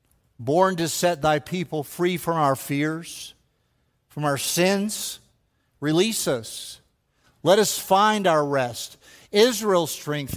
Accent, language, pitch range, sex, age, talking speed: American, English, 130-170 Hz, male, 50-69, 120 wpm